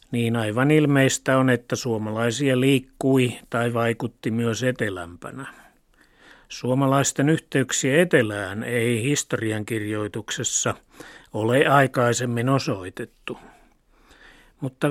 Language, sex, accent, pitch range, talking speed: Finnish, male, native, 110-130 Hz, 80 wpm